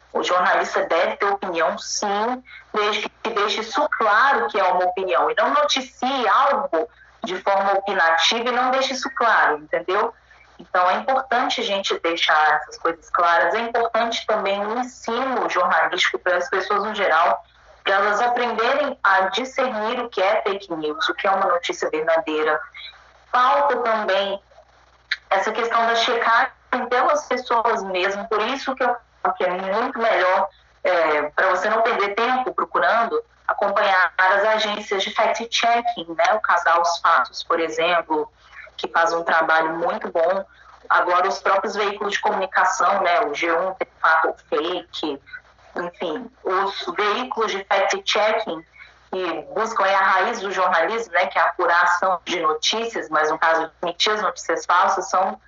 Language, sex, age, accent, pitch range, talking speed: Portuguese, female, 20-39, Brazilian, 175-230 Hz, 155 wpm